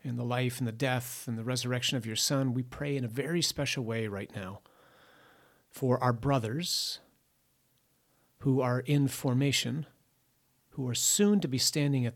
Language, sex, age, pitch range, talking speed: English, male, 40-59, 120-140 Hz, 175 wpm